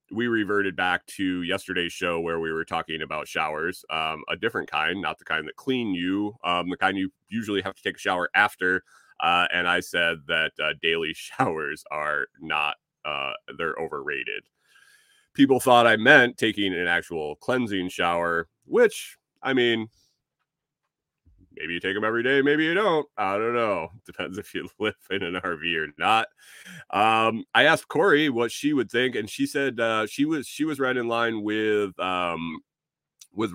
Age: 30-49